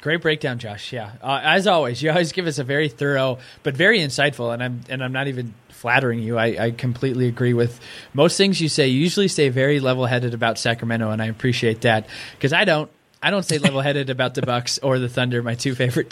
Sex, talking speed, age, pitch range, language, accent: male, 225 wpm, 20-39, 130-165 Hz, English, American